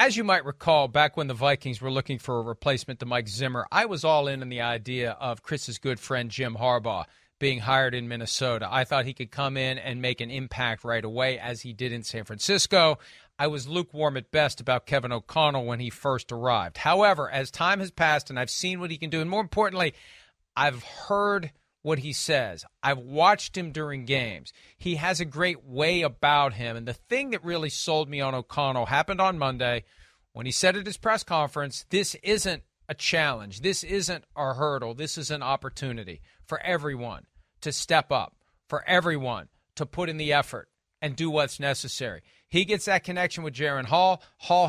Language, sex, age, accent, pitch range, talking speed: English, male, 40-59, American, 130-180 Hz, 200 wpm